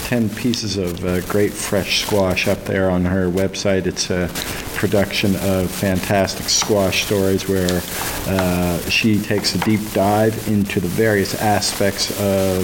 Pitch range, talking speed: 95-105 Hz, 145 wpm